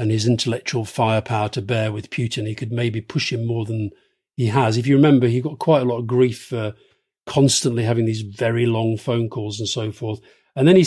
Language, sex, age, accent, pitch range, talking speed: English, male, 40-59, British, 115-135 Hz, 225 wpm